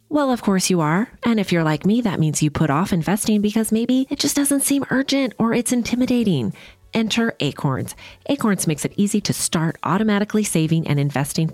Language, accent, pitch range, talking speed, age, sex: English, American, 145-210 Hz, 200 wpm, 30-49, female